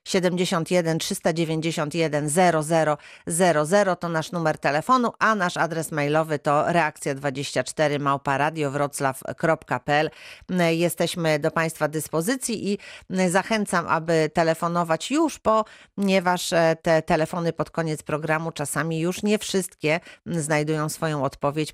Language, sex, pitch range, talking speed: Polish, female, 160-190 Hz, 105 wpm